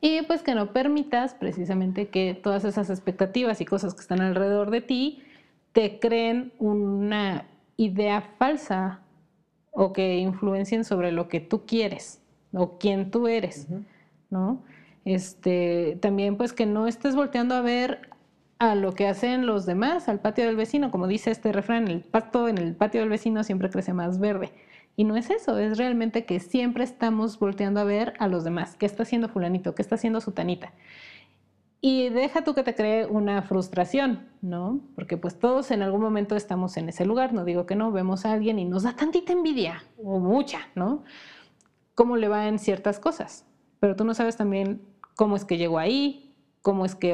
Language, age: Spanish, 30-49